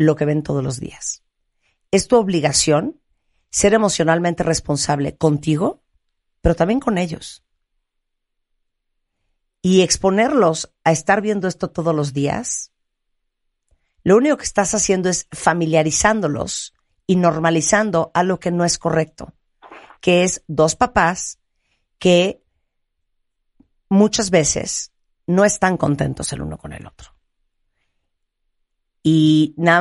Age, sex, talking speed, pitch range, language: 50-69, female, 115 wpm, 145-185 Hz, Spanish